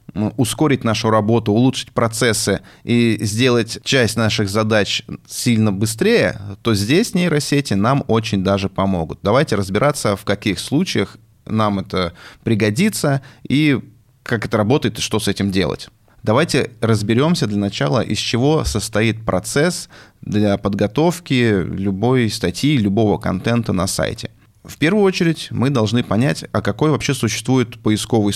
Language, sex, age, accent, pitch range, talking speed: Russian, male, 20-39, native, 105-135 Hz, 135 wpm